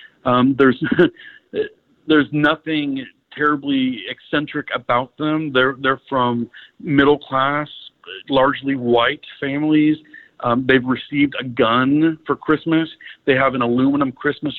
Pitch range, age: 125-150 Hz, 50-69